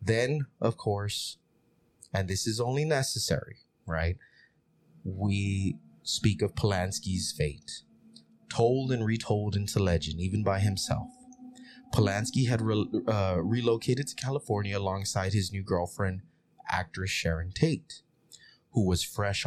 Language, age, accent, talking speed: English, 30-49, American, 115 wpm